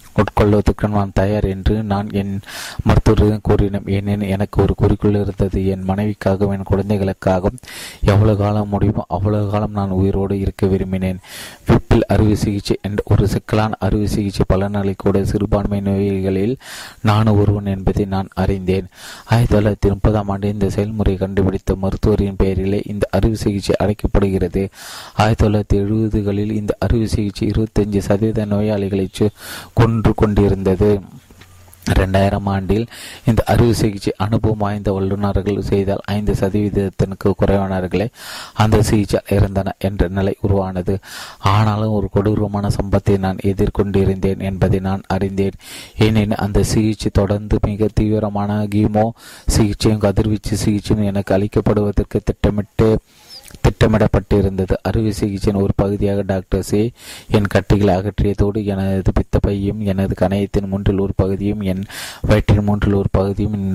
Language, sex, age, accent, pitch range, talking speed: Tamil, male, 30-49, native, 95-105 Hz, 100 wpm